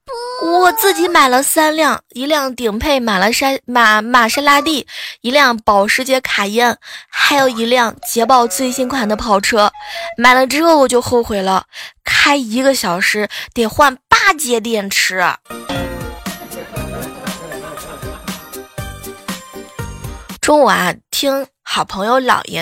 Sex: female